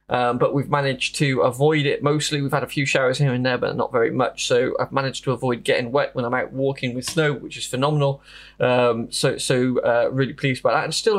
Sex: male